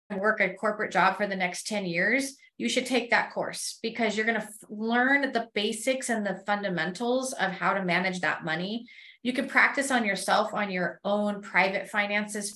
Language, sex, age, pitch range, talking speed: English, female, 30-49, 195-240 Hz, 190 wpm